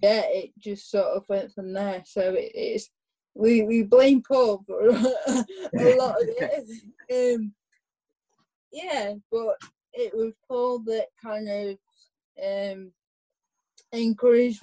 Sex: female